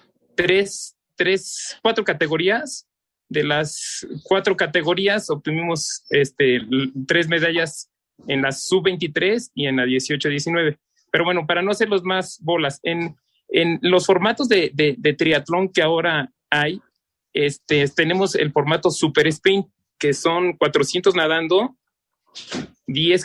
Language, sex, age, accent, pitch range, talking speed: Spanish, male, 30-49, Mexican, 150-185 Hz, 130 wpm